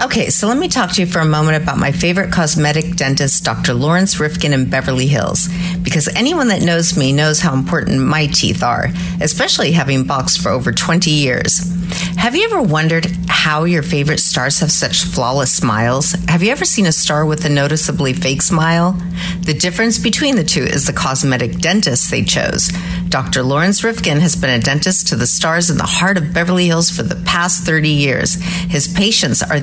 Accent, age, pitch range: American, 50-69, 155-185 Hz